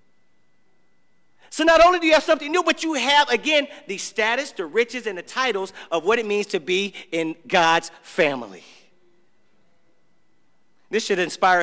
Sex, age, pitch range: male, 40-59, 200-285 Hz